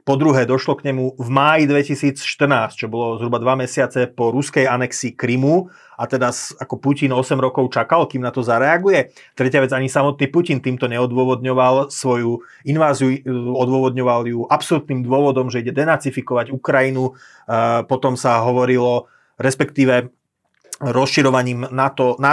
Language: Slovak